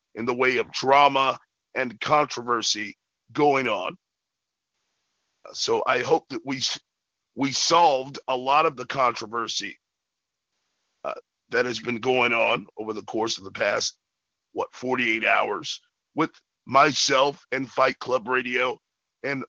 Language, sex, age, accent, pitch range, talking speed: English, male, 50-69, American, 130-160 Hz, 135 wpm